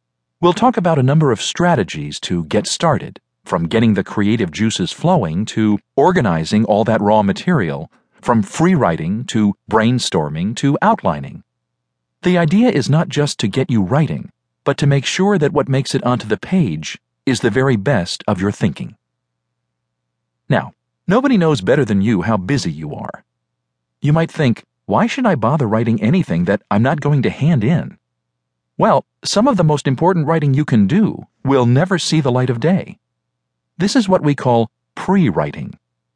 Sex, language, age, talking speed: male, English, 40-59, 175 wpm